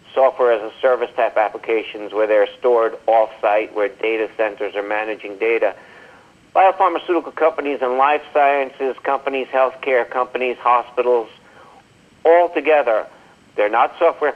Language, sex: English, male